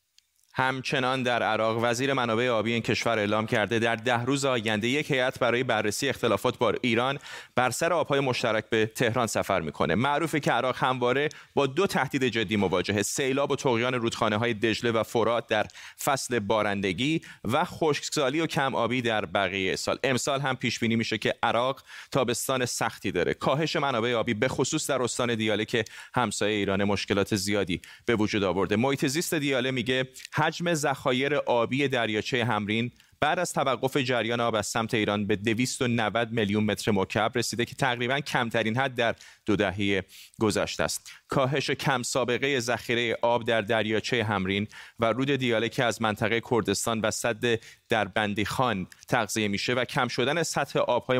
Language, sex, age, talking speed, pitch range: Persian, male, 30-49, 160 wpm, 110-135 Hz